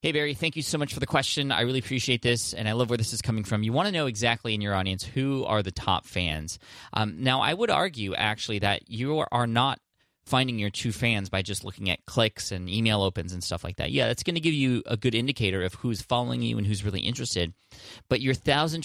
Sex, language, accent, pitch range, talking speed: male, English, American, 95-120 Hz, 255 wpm